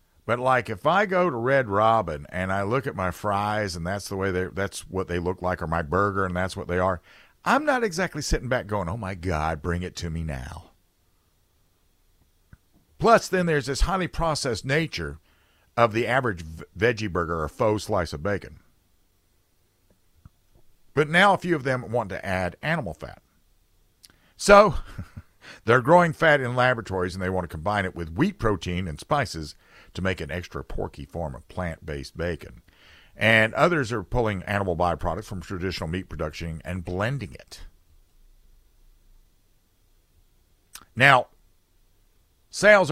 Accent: American